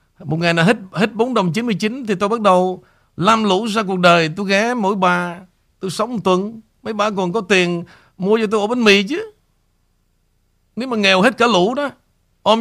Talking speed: 215 wpm